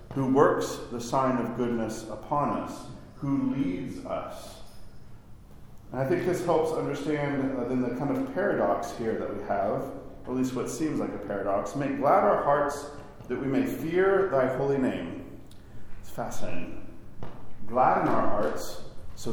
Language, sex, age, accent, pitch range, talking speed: English, male, 40-59, American, 110-145 Hz, 160 wpm